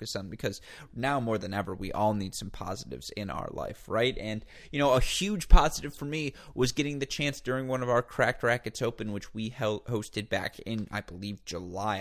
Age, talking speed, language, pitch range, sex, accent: 20-39, 205 wpm, English, 100-120 Hz, male, American